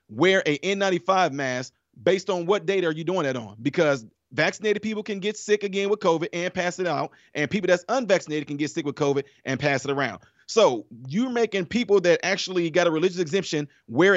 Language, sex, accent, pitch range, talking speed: English, male, American, 150-195 Hz, 210 wpm